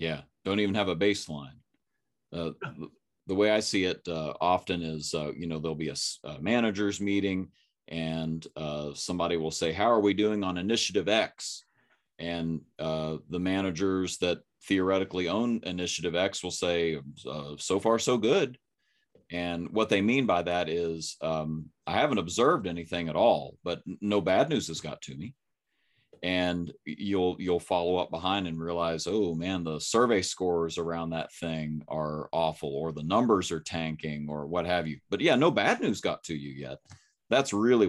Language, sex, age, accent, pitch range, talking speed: English, male, 30-49, American, 80-95 Hz, 175 wpm